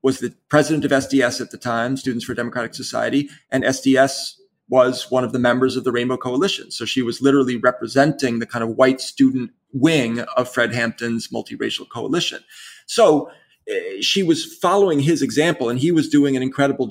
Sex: male